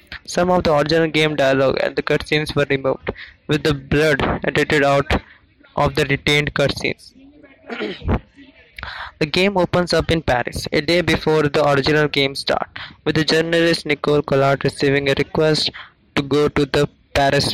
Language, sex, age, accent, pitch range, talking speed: English, male, 20-39, Indian, 140-160 Hz, 155 wpm